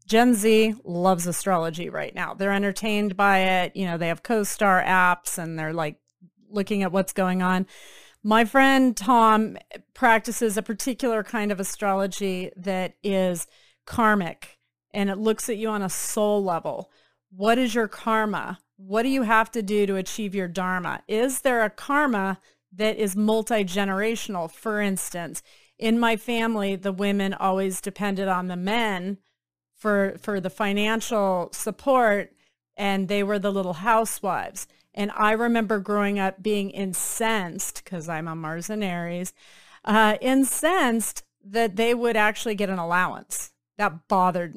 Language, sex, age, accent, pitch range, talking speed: English, female, 30-49, American, 185-220 Hz, 150 wpm